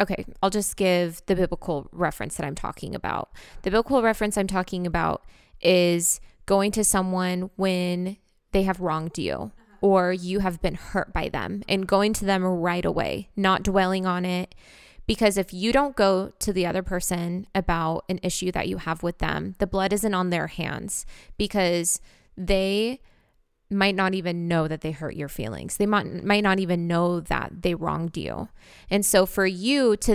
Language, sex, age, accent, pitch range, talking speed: English, female, 20-39, American, 180-205 Hz, 185 wpm